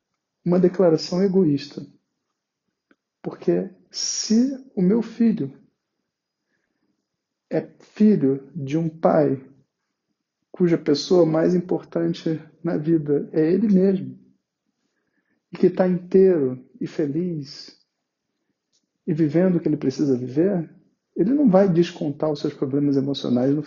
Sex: male